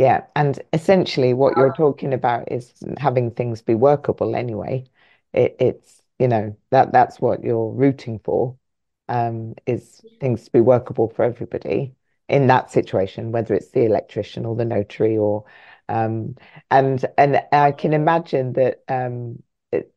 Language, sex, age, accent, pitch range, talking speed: English, female, 40-59, British, 120-140 Hz, 155 wpm